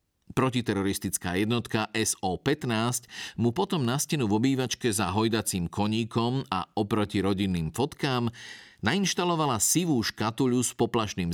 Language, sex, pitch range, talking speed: Slovak, male, 100-130 Hz, 110 wpm